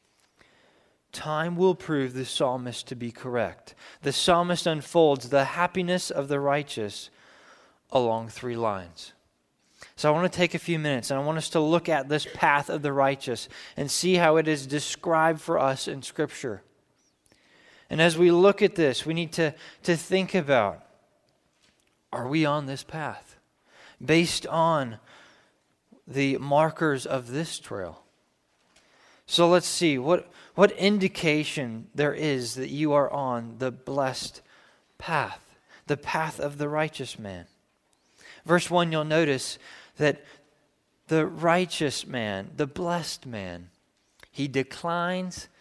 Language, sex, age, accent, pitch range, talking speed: English, male, 20-39, American, 135-170 Hz, 140 wpm